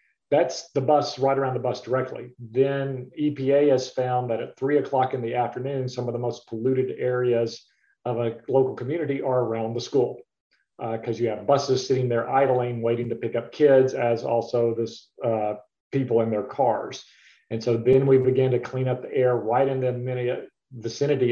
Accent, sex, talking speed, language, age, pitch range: American, male, 190 wpm, English, 40-59, 120-135 Hz